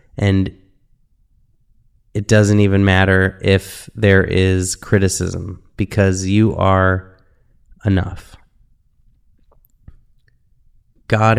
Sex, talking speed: male, 75 wpm